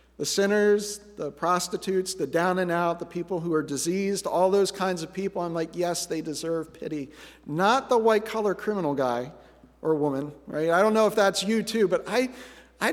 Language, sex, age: English, male, 50-69